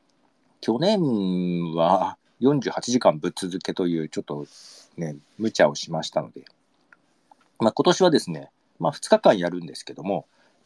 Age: 40-59